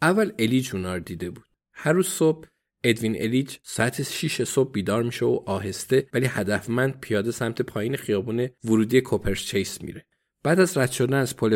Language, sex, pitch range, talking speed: Persian, male, 105-140 Hz, 170 wpm